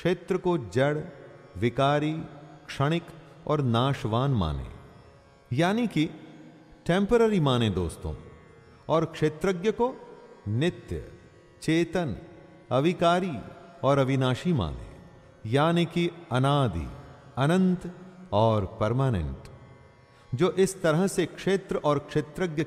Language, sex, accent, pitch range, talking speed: English, male, Indian, 115-175 Hz, 95 wpm